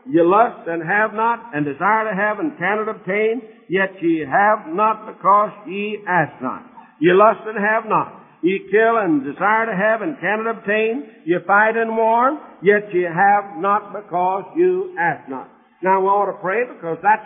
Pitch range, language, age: 180-235 Hz, English, 60-79